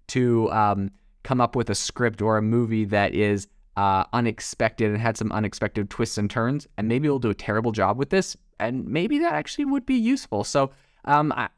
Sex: male